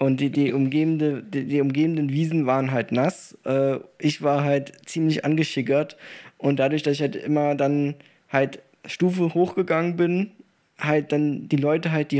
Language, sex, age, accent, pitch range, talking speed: German, male, 20-39, German, 130-155 Hz, 160 wpm